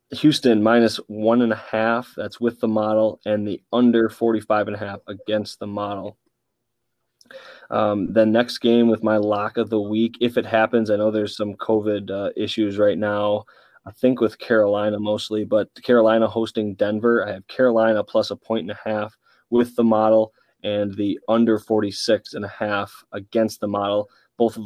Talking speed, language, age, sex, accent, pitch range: 160 wpm, English, 20-39, male, American, 105-115 Hz